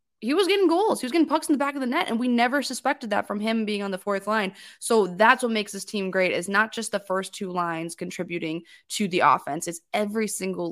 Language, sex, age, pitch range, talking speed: English, female, 20-39, 180-225 Hz, 265 wpm